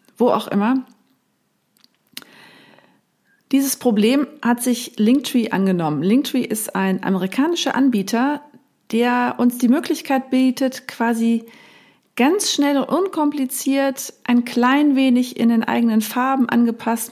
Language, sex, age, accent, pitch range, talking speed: German, female, 40-59, German, 210-255 Hz, 110 wpm